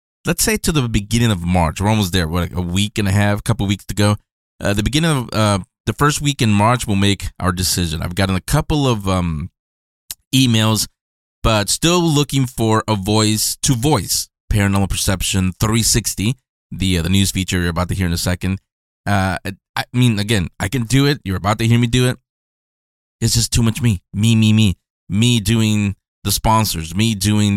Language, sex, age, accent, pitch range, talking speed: English, male, 20-39, American, 95-115 Hz, 205 wpm